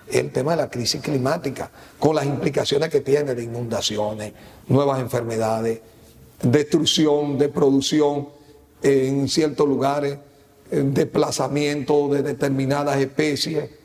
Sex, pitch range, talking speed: male, 130-155 Hz, 110 wpm